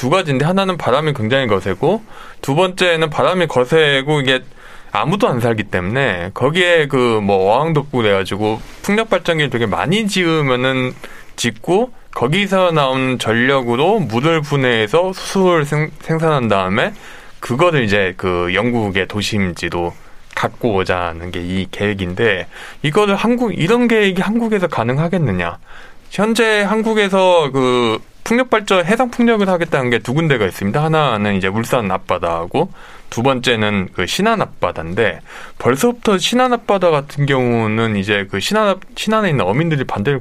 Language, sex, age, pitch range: Korean, male, 20-39, 110-185 Hz